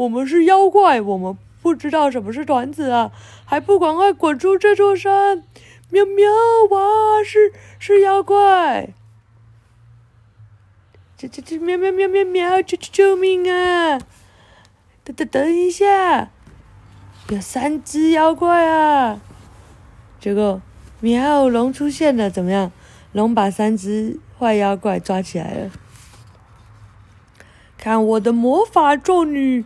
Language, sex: Chinese, female